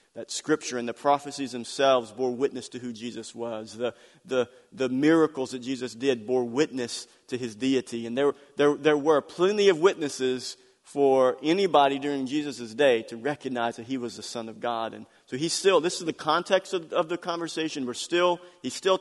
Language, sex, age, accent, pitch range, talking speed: English, male, 40-59, American, 125-160 Hz, 195 wpm